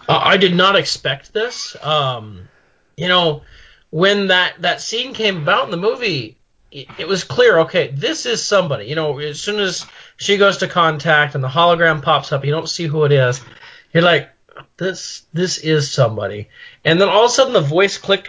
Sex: male